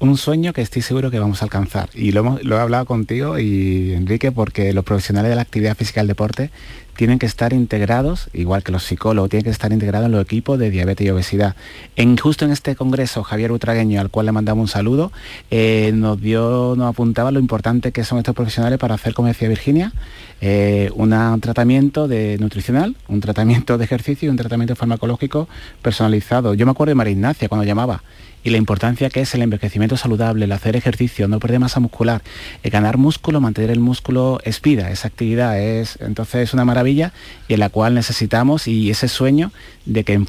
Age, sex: 30-49, male